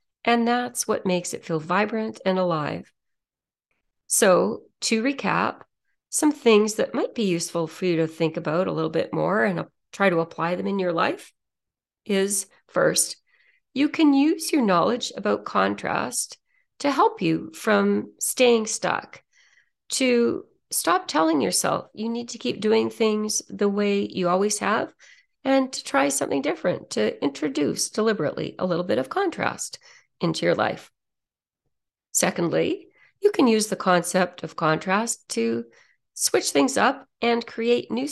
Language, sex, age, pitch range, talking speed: English, female, 40-59, 180-265 Hz, 150 wpm